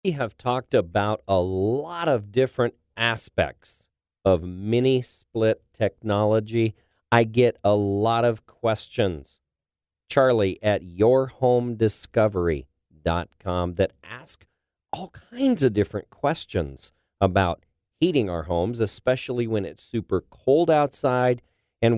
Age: 40-59